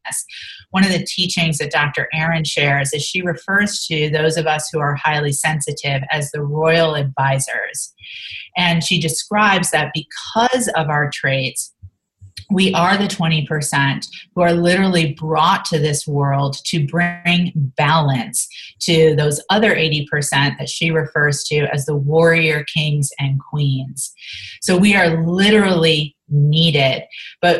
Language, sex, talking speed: English, female, 140 wpm